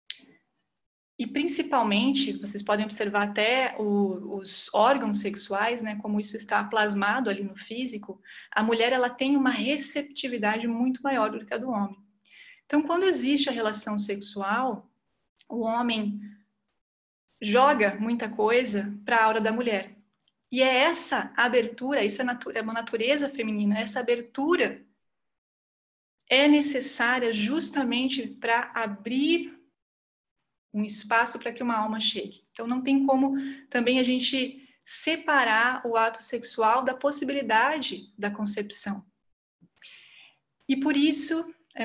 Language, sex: Portuguese, female